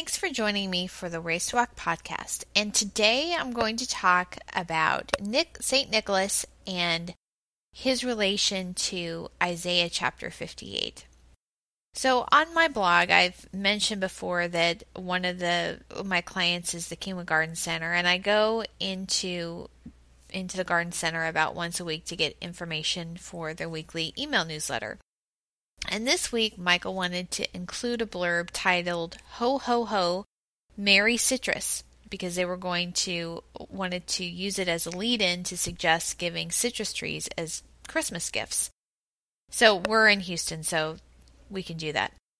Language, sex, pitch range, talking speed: English, female, 175-215 Hz, 150 wpm